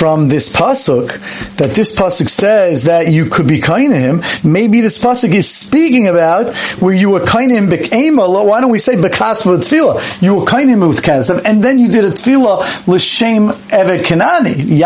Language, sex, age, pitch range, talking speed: English, male, 50-69, 155-210 Hz, 185 wpm